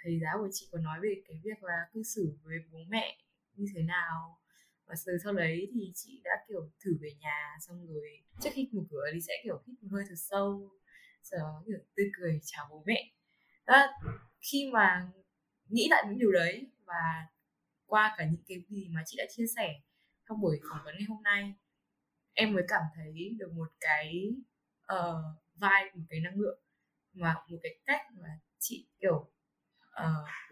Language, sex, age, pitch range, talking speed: Vietnamese, female, 20-39, 165-220 Hz, 185 wpm